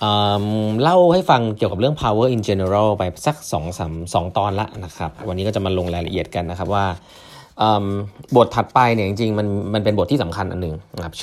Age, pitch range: 20-39, 90-120 Hz